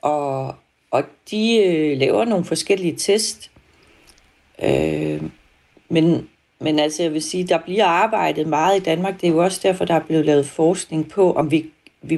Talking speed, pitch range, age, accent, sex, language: 165 wpm, 150-190 Hz, 40-59, native, female, Danish